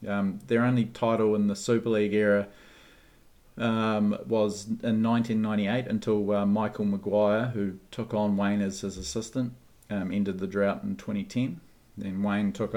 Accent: Australian